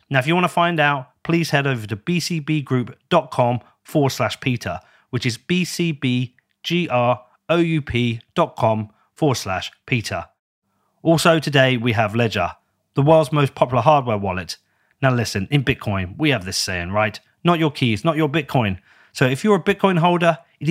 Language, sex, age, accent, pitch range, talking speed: English, male, 30-49, British, 115-160 Hz, 150 wpm